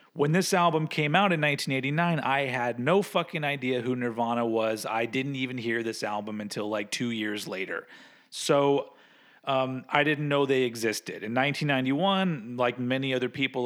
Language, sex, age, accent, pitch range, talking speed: English, male, 40-59, American, 120-155 Hz, 170 wpm